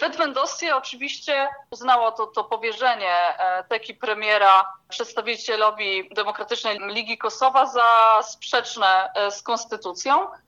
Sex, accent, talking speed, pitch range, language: female, native, 90 wpm, 205-255 Hz, Polish